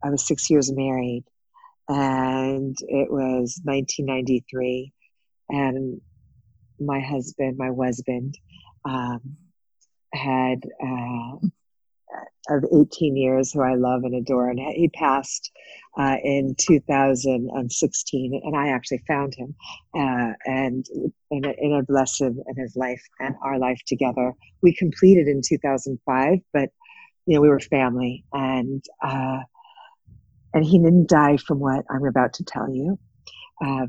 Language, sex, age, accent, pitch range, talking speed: English, female, 40-59, American, 130-150 Hz, 130 wpm